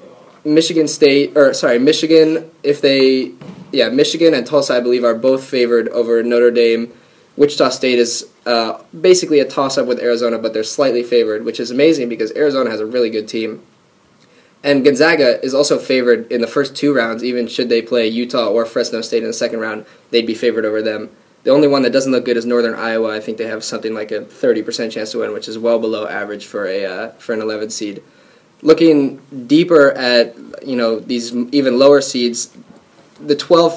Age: 10-29